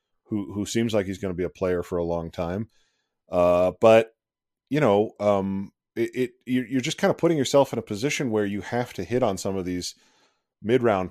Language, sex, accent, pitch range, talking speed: English, male, American, 95-115 Hz, 215 wpm